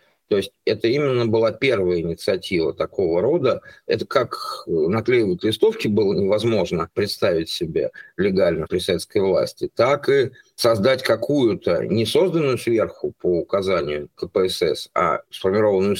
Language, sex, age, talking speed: Russian, male, 50-69, 130 wpm